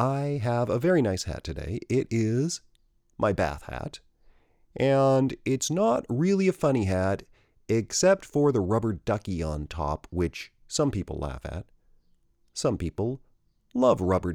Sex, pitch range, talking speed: male, 85-125 Hz, 145 wpm